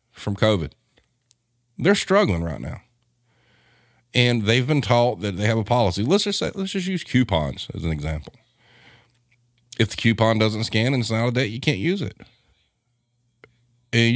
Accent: American